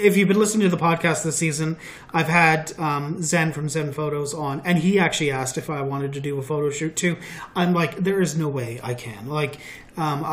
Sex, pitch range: male, 145-170 Hz